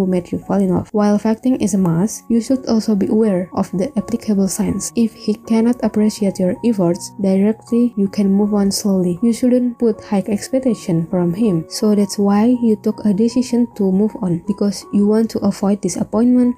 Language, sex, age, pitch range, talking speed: English, female, 20-39, 185-220 Hz, 195 wpm